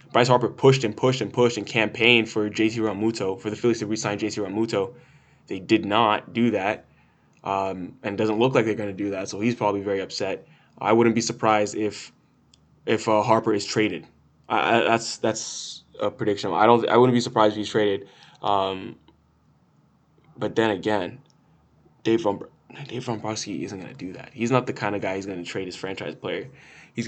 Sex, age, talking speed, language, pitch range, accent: male, 10-29, 205 wpm, English, 105-120 Hz, American